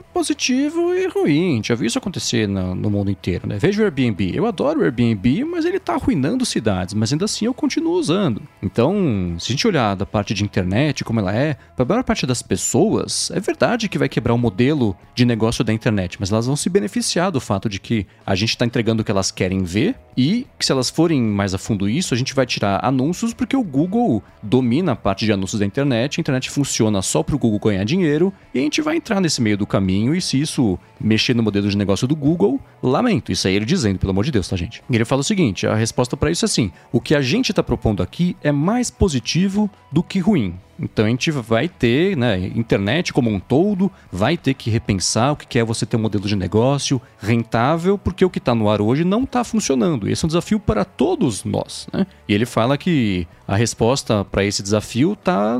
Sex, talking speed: male, 235 wpm